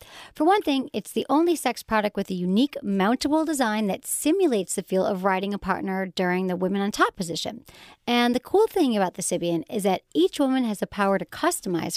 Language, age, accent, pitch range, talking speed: English, 40-59, American, 195-290 Hz, 205 wpm